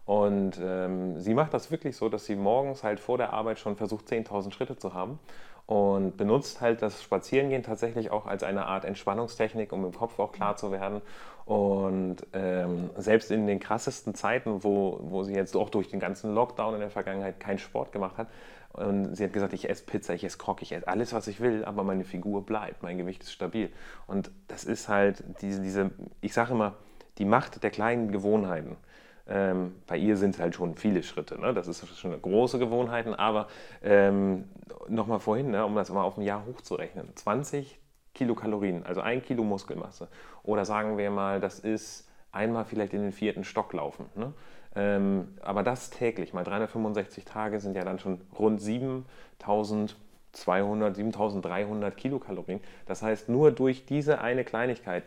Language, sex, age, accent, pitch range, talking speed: German, male, 30-49, German, 95-110 Hz, 185 wpm